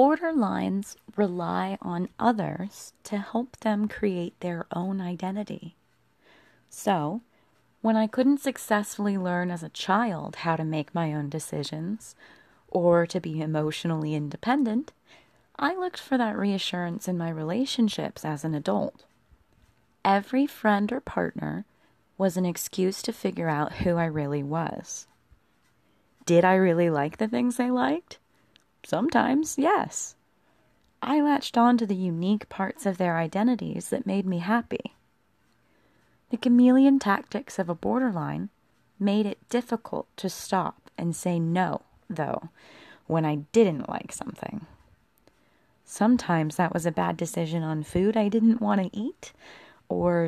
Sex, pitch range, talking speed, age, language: female, 170-230 Hz, 135 wpm, 30-49, English